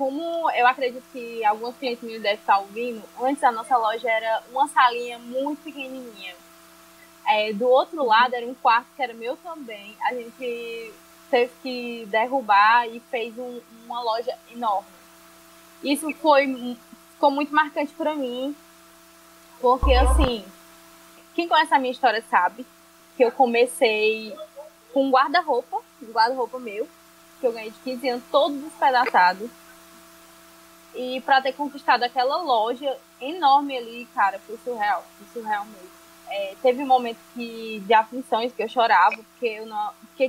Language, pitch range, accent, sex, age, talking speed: Portuguese, 225-275 Hz, Brazilian, female, 20-39, 140 wpm